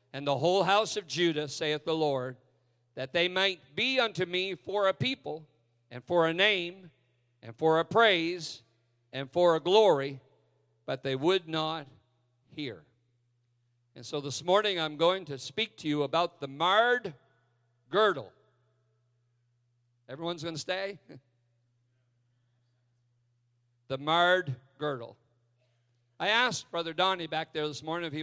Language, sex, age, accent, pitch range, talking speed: English, male, 50-69, American, 120-170 Hz, 140 wpm